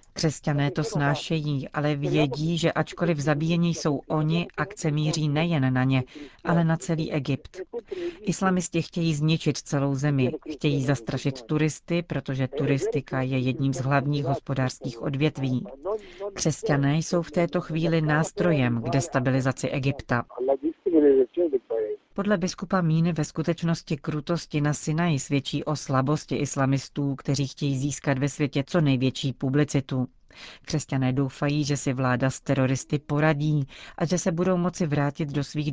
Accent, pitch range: native, 135-160 Hz